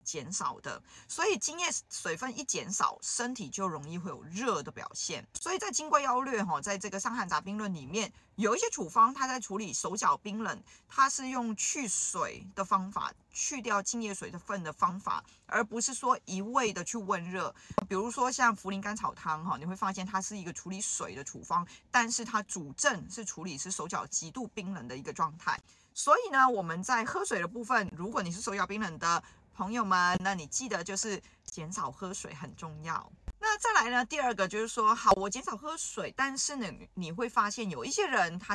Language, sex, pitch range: Chinese, female, 185-240 Hz